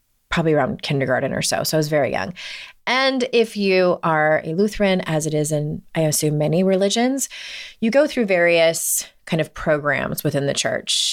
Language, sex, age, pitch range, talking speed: English, female, 30-49, 155-210 Hz, 185 wpm